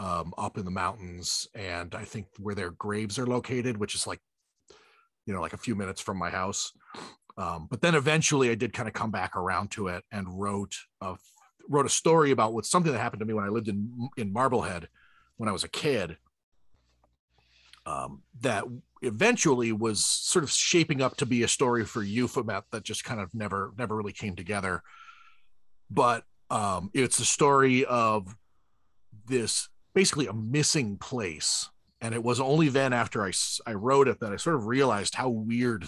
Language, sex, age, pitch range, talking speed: English, male, 40-59, 100-130 Hz, 190 wpm